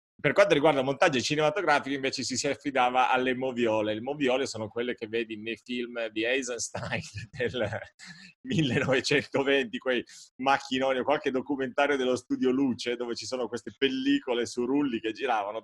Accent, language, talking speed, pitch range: native, Italian, 155 wpm, 120-150 Hz